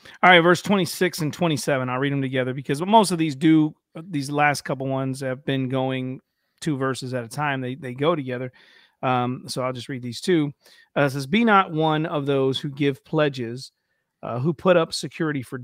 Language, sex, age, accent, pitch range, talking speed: English, male, 40-59, American, 135-170 Hz, 215 wpm